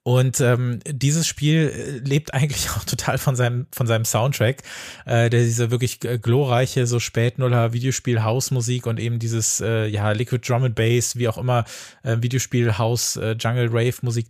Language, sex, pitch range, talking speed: German, male, 110-130 Hz, 145 wpm